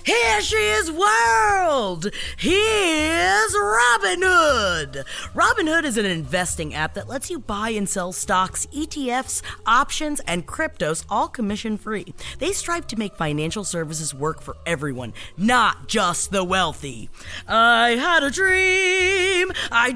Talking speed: 130 wpm